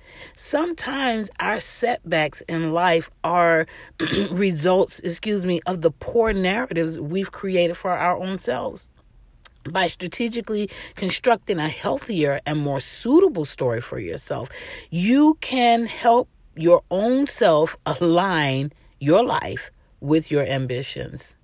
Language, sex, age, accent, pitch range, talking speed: English, female, 40-59, American, 165-220 Hz, 120 wpm